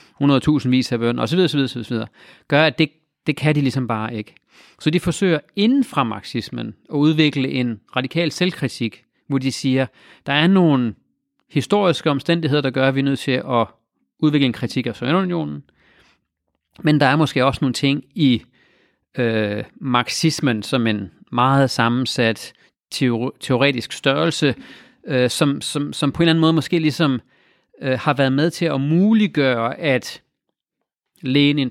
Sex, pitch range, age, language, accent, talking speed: male, 125-155 Hz, 40-59, Danish, native, 170 wpm